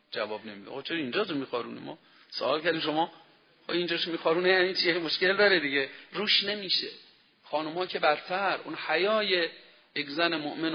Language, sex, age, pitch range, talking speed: Persian, male, 40-59, 130-180 Hz, 155 wpm